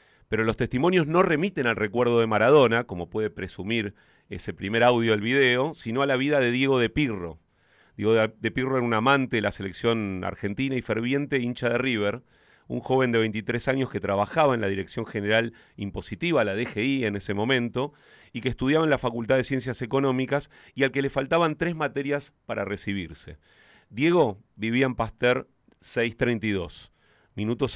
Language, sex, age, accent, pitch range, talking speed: Spanish, male, 40-59, Argentinian, 105-135 Hz, 175 wpm